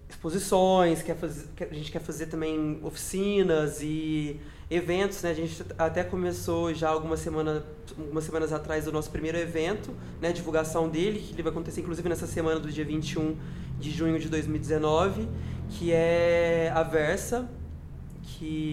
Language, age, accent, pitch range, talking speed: Portuguese, 20-39, Brazilian, 155-175 Hz, 150 wpm